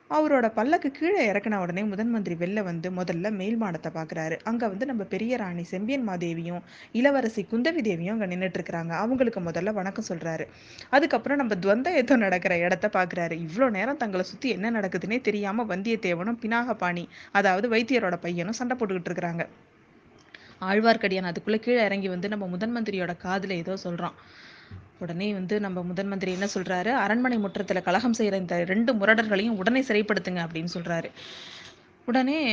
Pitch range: 180-230 Hz